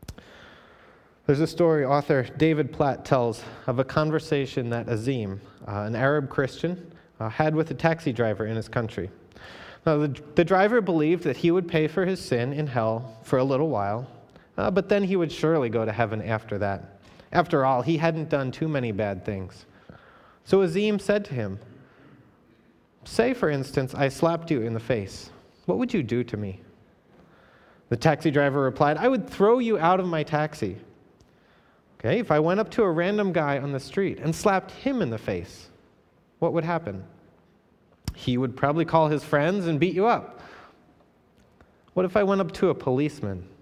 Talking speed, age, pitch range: 185 wpm, 30-49, 115-165 Hz